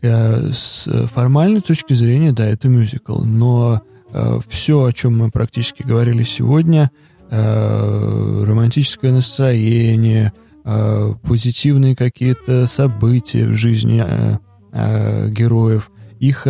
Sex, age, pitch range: male, 20-39, 105-125 Hz